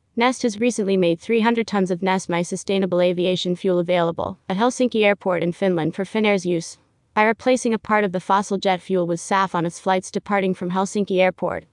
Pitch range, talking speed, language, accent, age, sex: 180-210 Hz, 200 wpm, English, American, 30-49, female